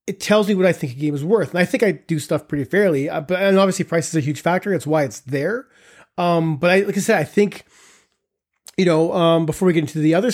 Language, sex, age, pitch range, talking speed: English, male, 30-49, 155-190 Hz, 265 wpm